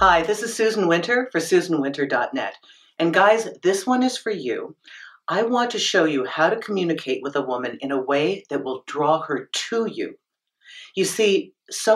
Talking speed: 185 wpm